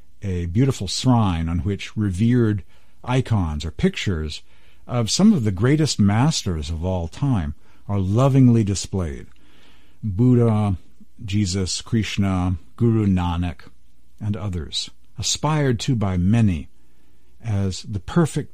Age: 50-69